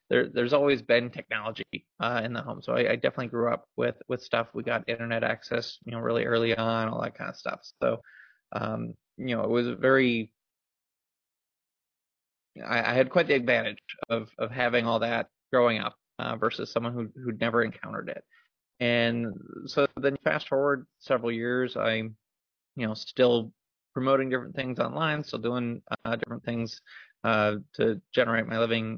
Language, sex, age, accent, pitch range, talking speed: English, male, 20-39, American, 115-125 Hz, 180 wpm